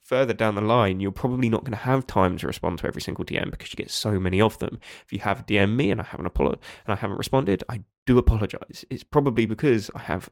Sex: male